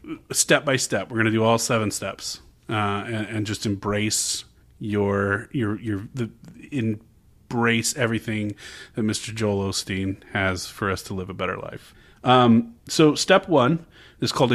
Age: 30-49